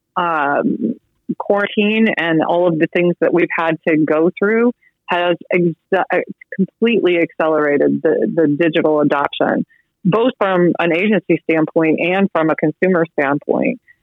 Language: English